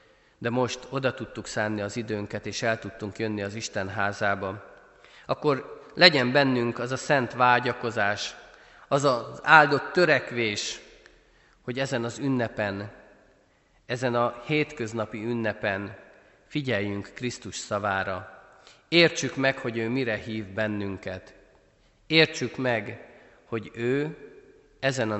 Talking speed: 115 wpm